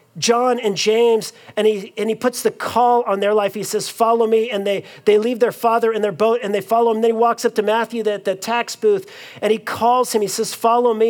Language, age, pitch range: English, 40-59, 205-240 Hz